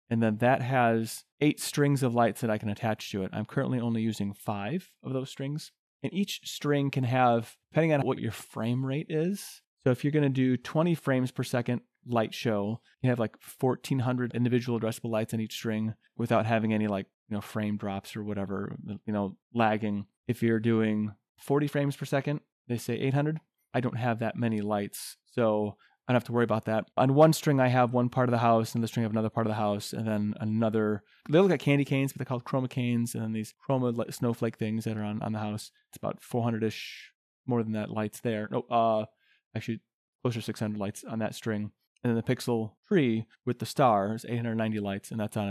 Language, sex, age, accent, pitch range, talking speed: English, male, 30-49, American, 105-125 Hz, 220 wpm